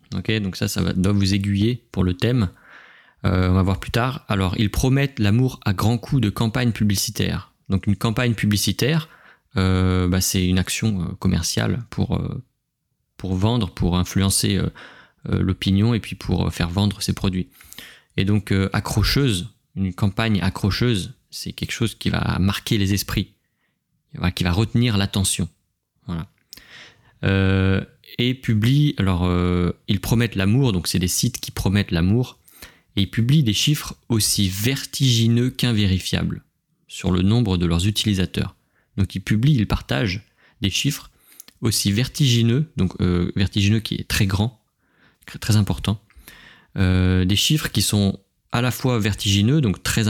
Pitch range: 95-115 Hz